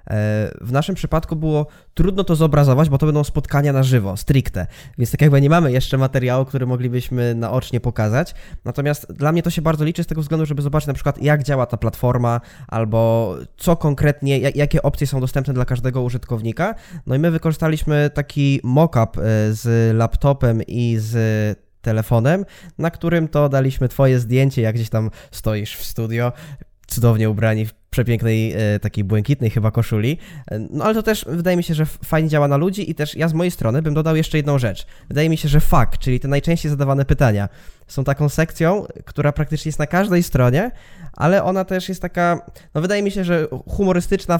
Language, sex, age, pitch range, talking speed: Polish, male, 10-29, 115-155 Hz, 190 wpm